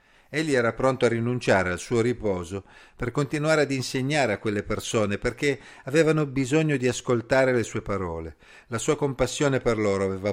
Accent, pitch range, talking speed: native, 105-140 Hz, 170 wpm